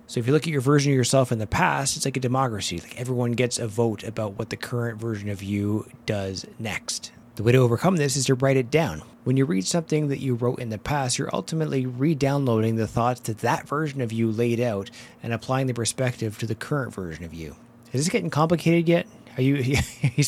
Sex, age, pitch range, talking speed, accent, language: male, 30-49, 115-140 Hz, 235 wpm, American, English